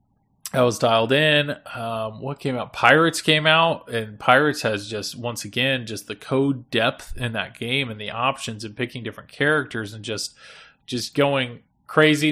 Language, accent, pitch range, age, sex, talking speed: English, American, 110-130 Hz, 20-39, male, 175 wpm